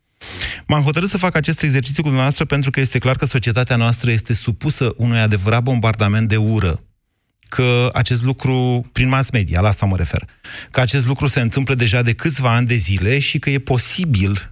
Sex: male